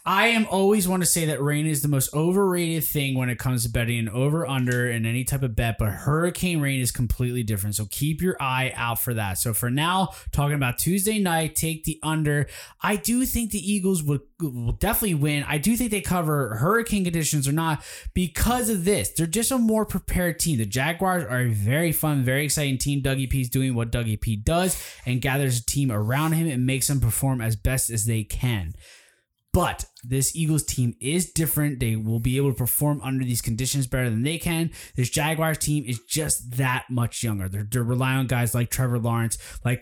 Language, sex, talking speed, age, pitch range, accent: English, male, 215 wpm, 20-39, 120-165 Hz, American